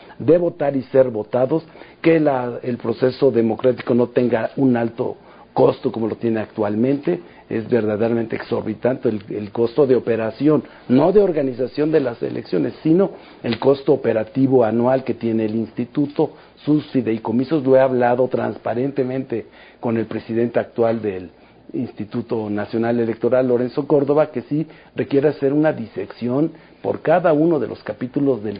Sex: male